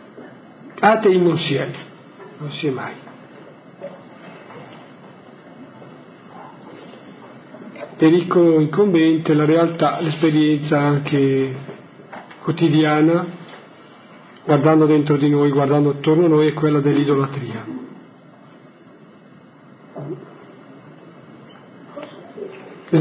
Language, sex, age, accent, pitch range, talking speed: Italian, male, 50-69, native, 150-185 Hz, 75 wpm